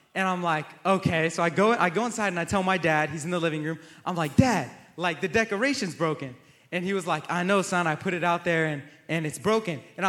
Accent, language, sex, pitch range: American, English, male, 165-225 Hz